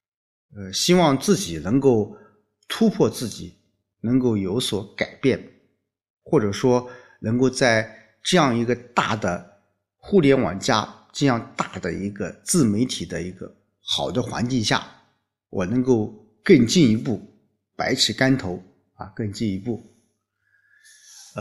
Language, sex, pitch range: Chinese, male, 100-135 Hz